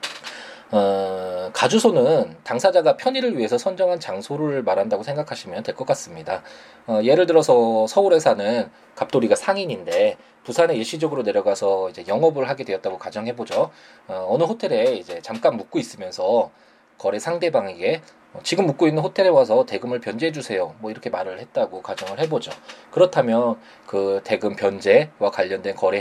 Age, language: 20-39, Korean